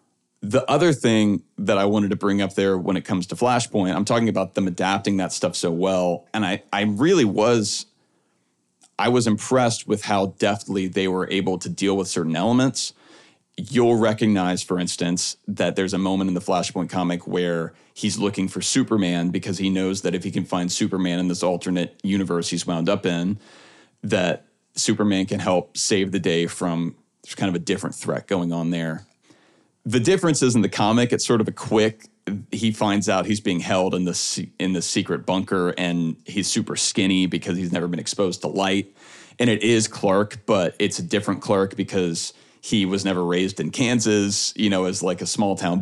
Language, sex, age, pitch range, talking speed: English, male, 30-49, 90-110 Hz, 195 wpm